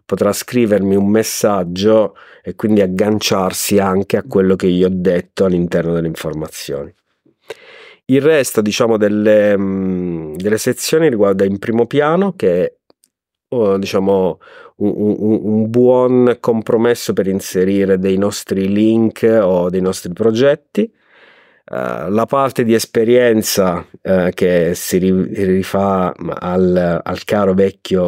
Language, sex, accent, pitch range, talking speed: Italian, male, native, 95-110 Hz, 115 wpm